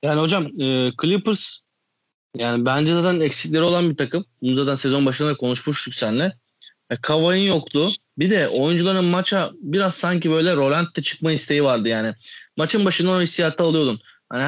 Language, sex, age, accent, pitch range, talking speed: Turkish, male, 30-49, native, 130-180 Hz, 160 wpm